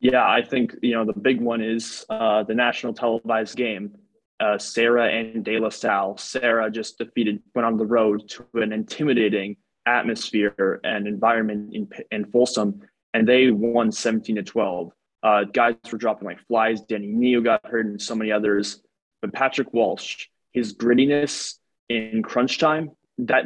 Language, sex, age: English, male, 20-39